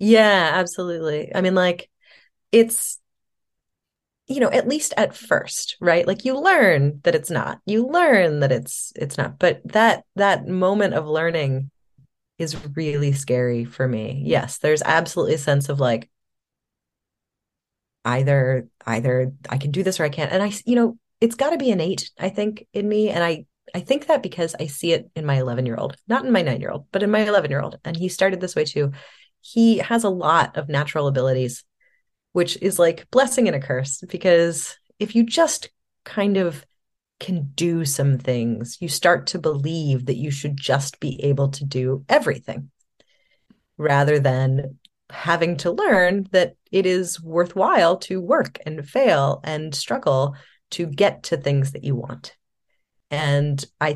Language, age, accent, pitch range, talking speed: English, 30-49, American, 140-190 Hz, 175 wpm